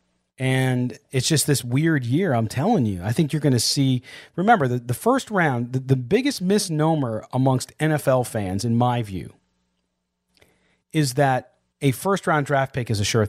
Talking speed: 175 wpm